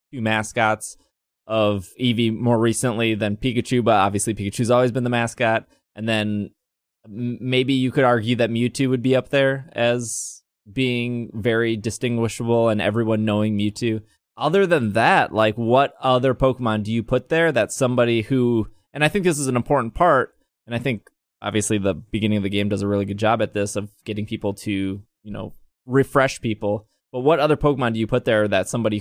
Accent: American